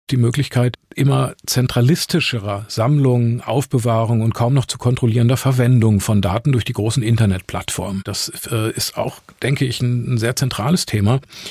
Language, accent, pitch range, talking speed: German, German, 115-140 Hz, 150 wpm